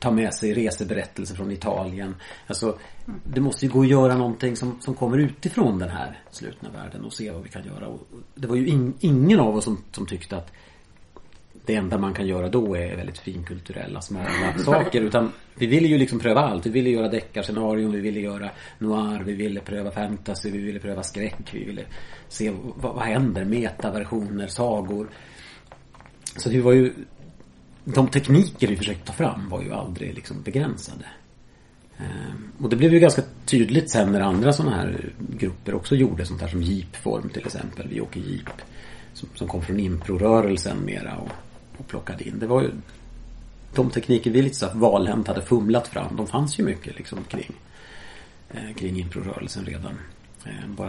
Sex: male